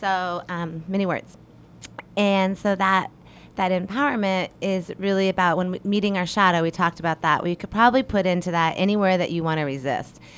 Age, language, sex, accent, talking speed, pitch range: 30-49, English, female, American, 180 wpm, 155-185 Hz